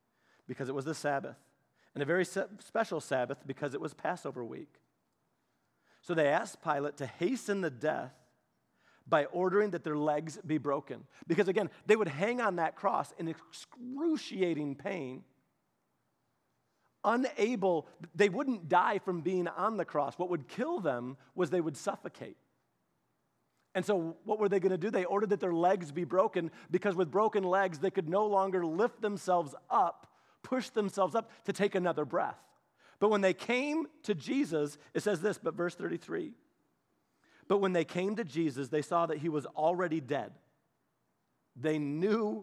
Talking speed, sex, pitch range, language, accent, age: 165 wpm, male, 150-205 Hz, English, American, 40-59